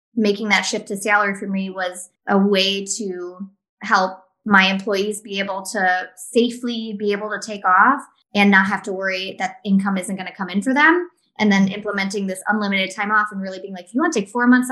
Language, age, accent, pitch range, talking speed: English, 20-39, American, 190-230 Hz, 225 wpm